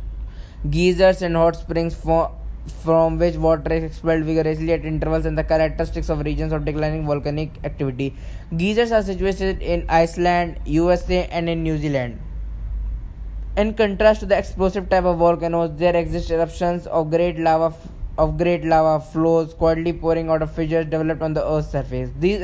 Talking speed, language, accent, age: 160 wpm, English, Indian, 10-29